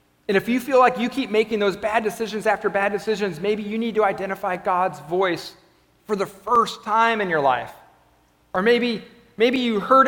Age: 40-59